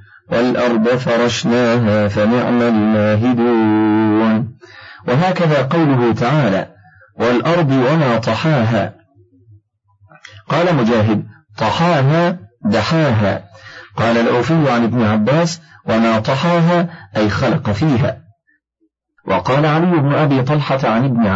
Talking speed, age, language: 85 wpm, 50-69, Arabic